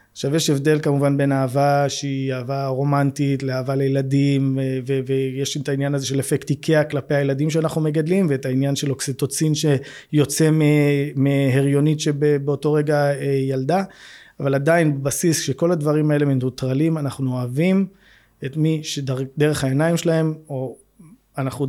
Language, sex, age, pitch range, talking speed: Hebrew, male, 20-39, 135-150 Hz, 135 wpm